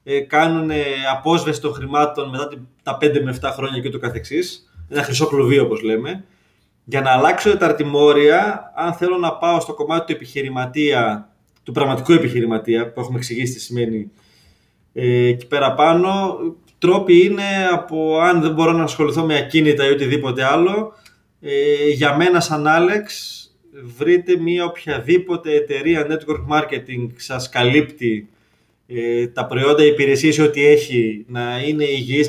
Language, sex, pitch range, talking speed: Greek, male, 130-160 Hz, 145 wpm